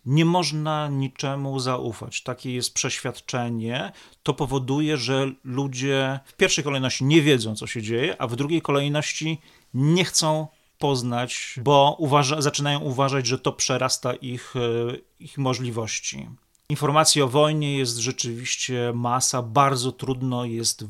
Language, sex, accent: English, male, Polish